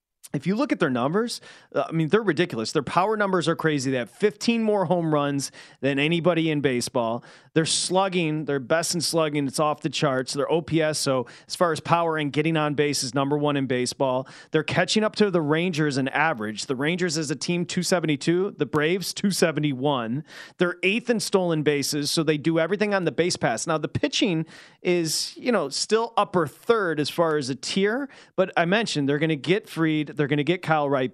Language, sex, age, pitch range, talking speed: English, male, 30-49, 145-180 Hz, 210 wpm